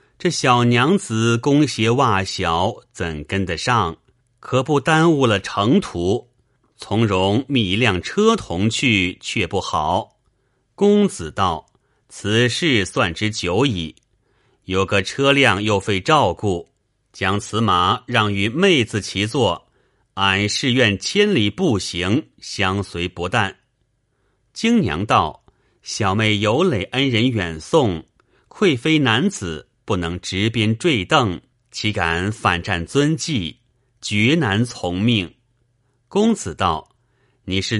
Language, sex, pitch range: Chinese, male, 100-130 Hz